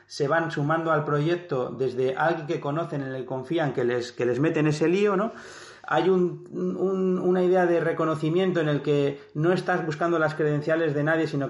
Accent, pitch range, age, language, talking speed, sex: Spanish, 145-175 Hz, 30-49, Spanish, 205 wpm, male